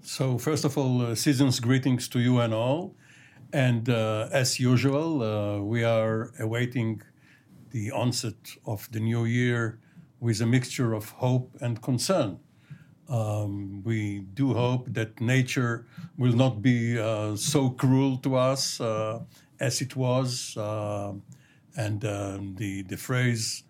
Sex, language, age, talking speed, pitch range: male, English, 60-79, 140 wpm, 115-140 Hz